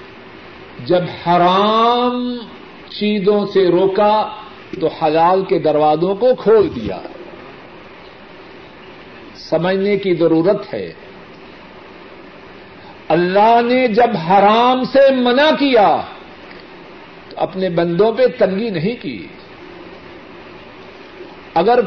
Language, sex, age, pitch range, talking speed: Urdu, male, 50-69, 185-245 Hz, 85 wpm